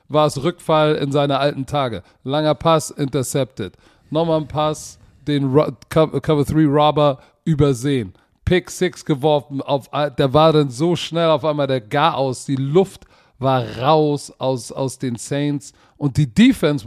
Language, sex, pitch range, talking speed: German, male, 130-155 Hz, 140 wpm